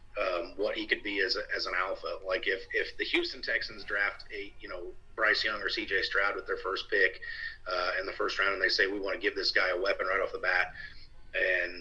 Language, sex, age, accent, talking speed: English, male, 30-49, American, 255 wpm